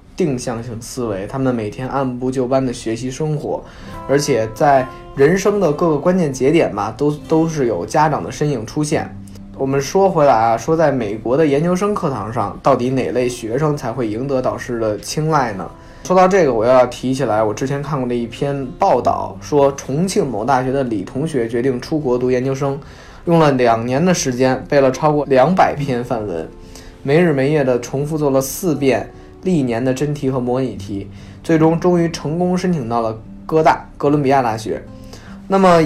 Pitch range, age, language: 120-155 Hz, 20-39, Chinese